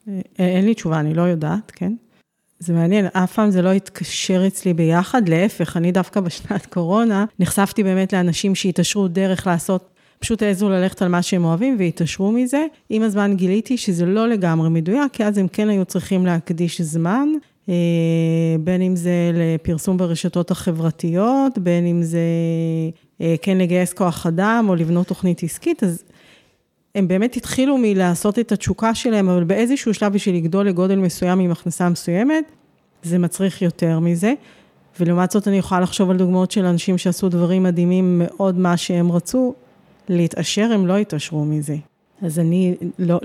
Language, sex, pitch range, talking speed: Hebrew, female, 170-200 Hz, 160 wpm